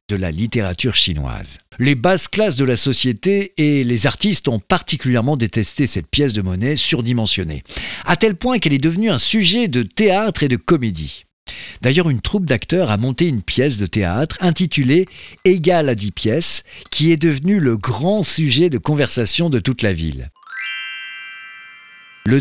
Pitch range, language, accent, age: 115-180 Hz, French, French, 50-69